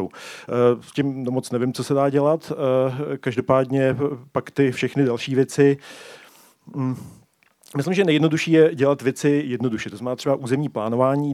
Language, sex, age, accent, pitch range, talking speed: Czech, male, 40-59, native, 125-135 Hz, 140 wpm